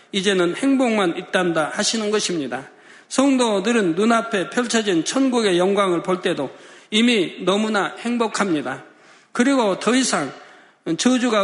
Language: Korean